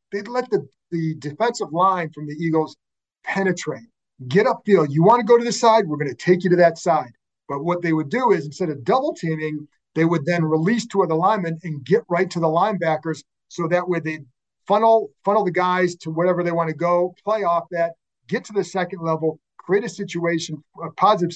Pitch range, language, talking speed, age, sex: 160-195 Hz, English, 220 wpm, 40-59, male